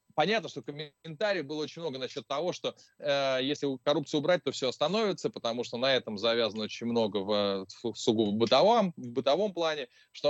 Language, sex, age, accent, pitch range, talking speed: Russian, male, 20-39, native, 115-155 Hz, 175 wpm